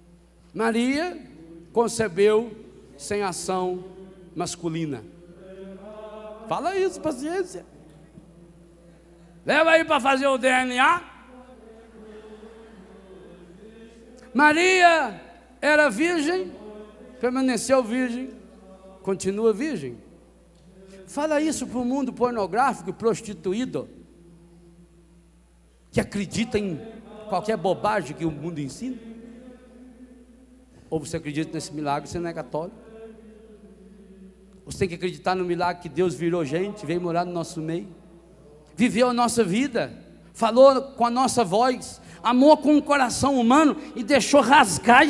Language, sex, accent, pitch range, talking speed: Portuguese, male, Brazilian, 175-255 Hz, 105 wpm